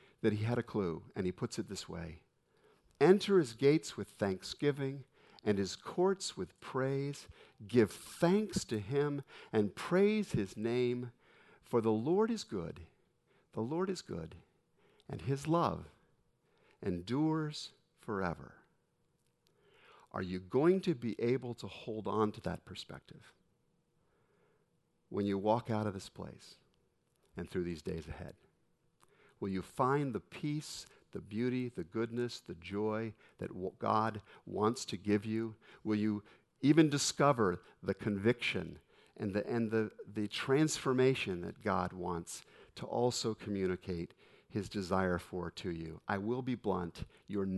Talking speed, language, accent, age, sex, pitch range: 145 wpm, English, American, 50-69, male, 100-135 Hz